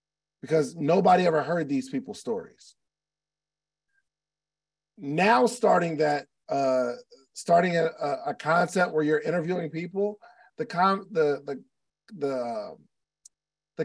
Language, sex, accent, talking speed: English, male, American, 105 wpm